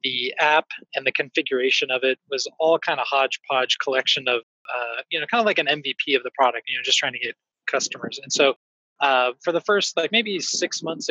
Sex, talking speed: male, 225 wpm